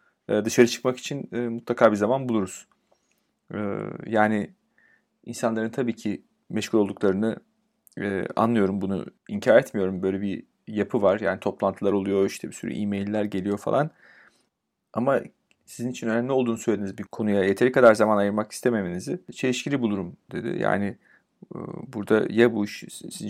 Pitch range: 100-120 Hz